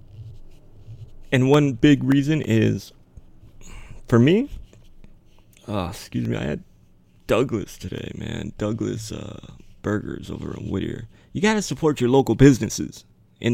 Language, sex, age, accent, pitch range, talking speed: English, male, 30-49, American, 100-130 Hz, 130 wpm